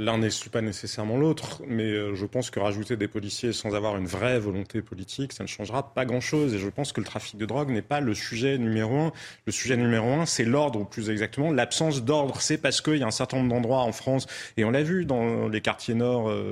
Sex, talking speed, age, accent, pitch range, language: male, 245 wpm, 30-49, French, 110-150 Hz, French